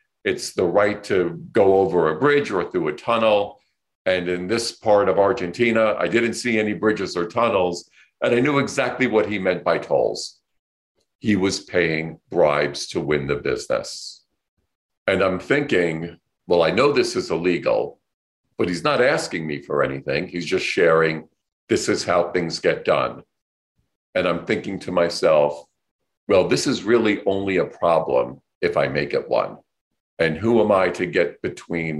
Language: English